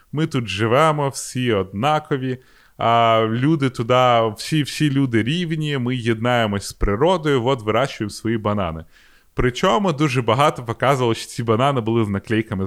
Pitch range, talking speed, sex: 110-135 Hz, 135 wpm, male